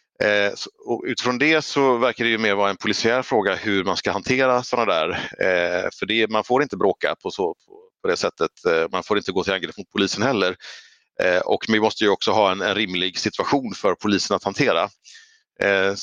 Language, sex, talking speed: Swedish, male, 205 wpm